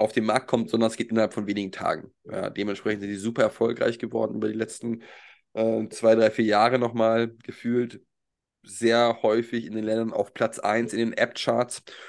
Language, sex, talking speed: German, male, 195 wpm